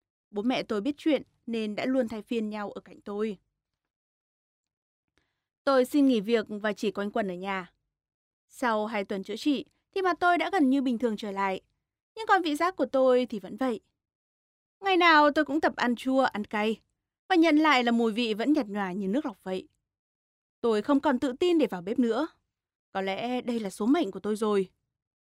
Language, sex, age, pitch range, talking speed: Vietnamese, female, 20-39, 215-300 Hz, 210 wpm